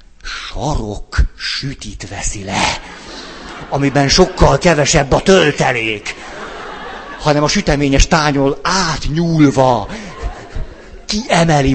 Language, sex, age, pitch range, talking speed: Hungarian, male, 50-69, 115-155 Hz, 75 wpm